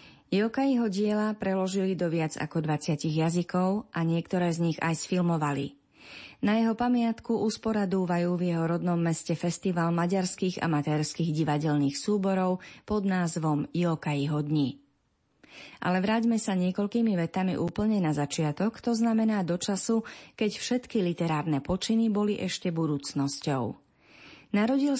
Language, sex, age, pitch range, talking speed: Slovak, female, 30-49, 160-205 Hz, 120 wpm